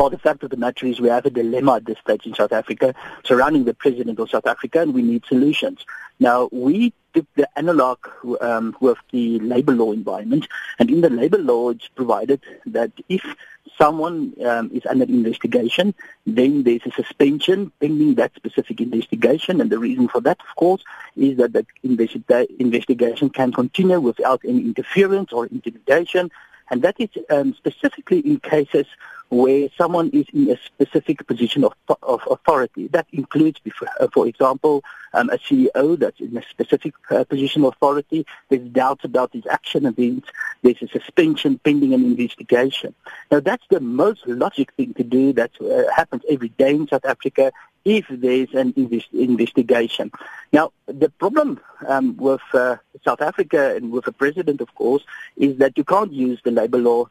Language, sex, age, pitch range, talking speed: English, male, 50-69, 125-195 Hz, 170 wpm